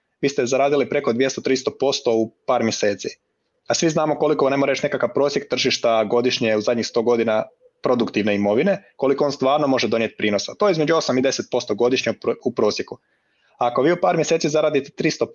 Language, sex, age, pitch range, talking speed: Croatian, male, 30-49, 115-145 Hz, 180 wpm